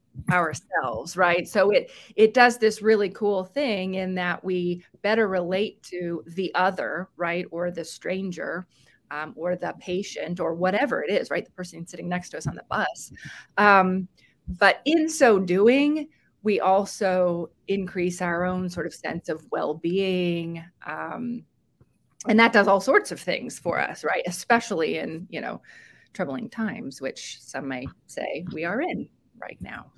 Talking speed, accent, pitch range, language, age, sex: 160 wpm, American, 175-240 Hz, English, 30-49, female